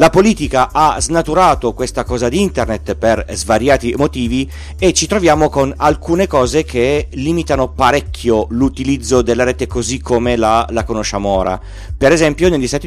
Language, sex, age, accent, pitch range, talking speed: Italian, male, 40-59, native, 115-155 Hz, 155 wpm